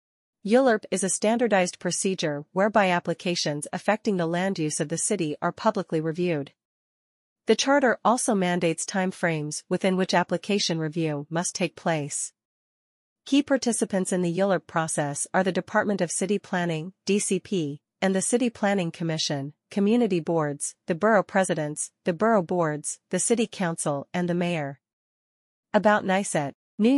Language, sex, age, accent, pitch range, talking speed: English, female, 40-59, American, 160-200 Hz, 145 wpm